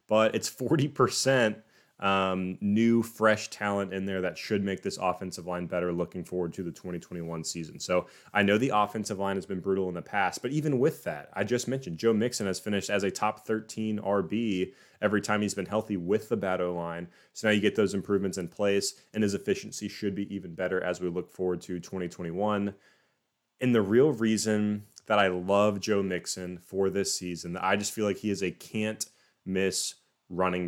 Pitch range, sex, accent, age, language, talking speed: 90-105 Hz, male, American, 20-39, English, 200 wpm